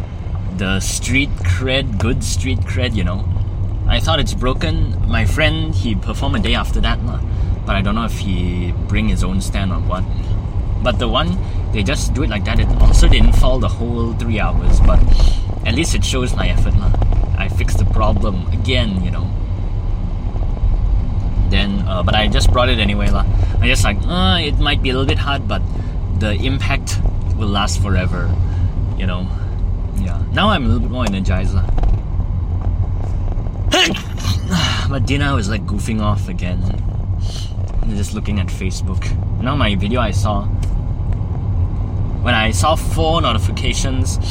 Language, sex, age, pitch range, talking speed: English, male, 20-39, 90-100 Hz, 170 wpm